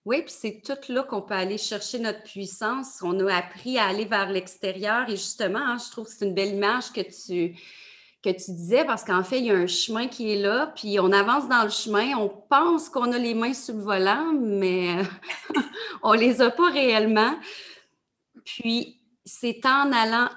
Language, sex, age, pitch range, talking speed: French, female, 30-49, 185-225 Hz, 205 wpm